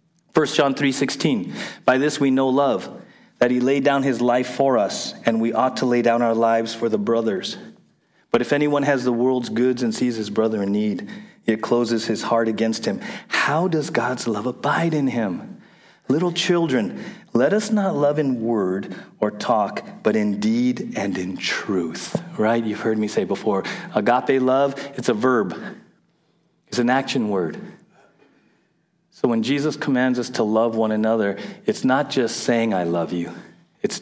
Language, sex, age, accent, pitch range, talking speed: English, male, 40-59, American, 110-140 Hz, 180 wpm